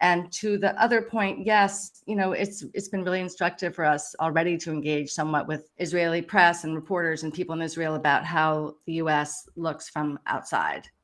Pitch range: 150-170 Hz